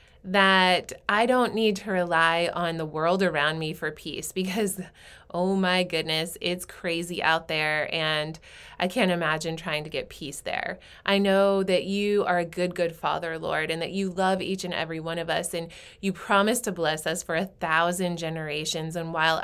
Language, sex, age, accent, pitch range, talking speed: English, female, 20-39, American, 165-195 Hz, 190 wpm